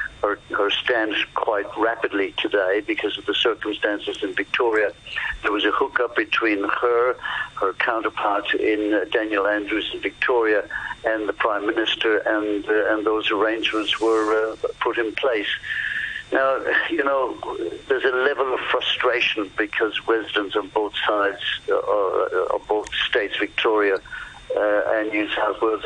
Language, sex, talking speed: English, male, 145 wpm